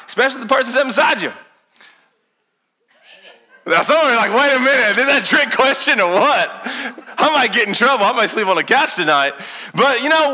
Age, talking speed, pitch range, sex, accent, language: 30-49, 195 wpm, 165-250 Hz, male, American, English